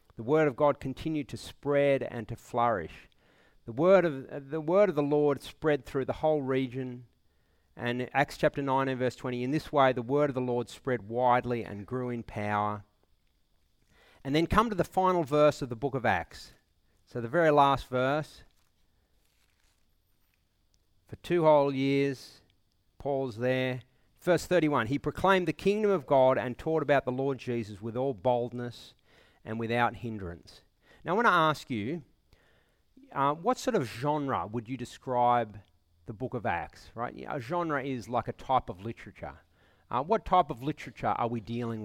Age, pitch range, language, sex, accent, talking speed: 40-59, 95-140 Hz, English, male, Australian, 175 wpm